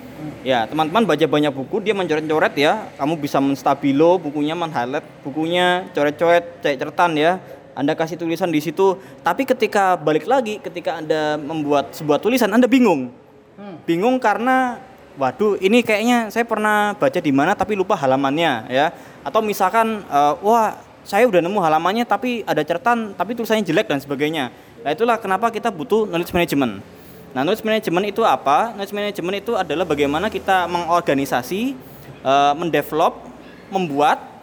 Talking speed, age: 145 wpm, 20-39